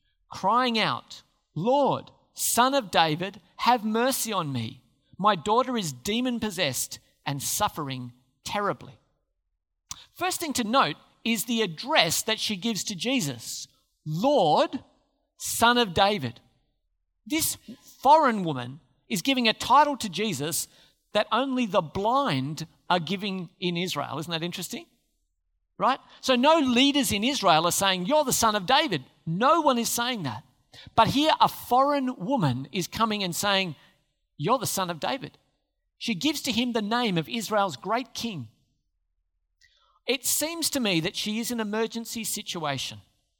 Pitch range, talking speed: 145-235 Hz, 145 wpm